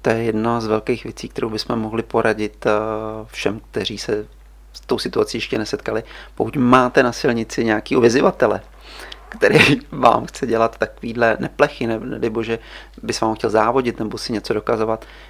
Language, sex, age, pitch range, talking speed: Czech, male, 30-49, 105-115 Hz, 160 wpm